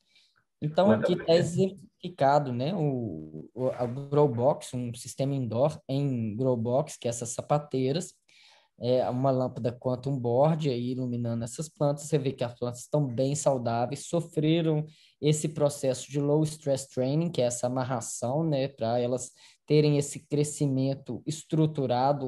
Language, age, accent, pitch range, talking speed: Portuguese, 10-29, Brazilian, 130-155 Hz, 150 wpm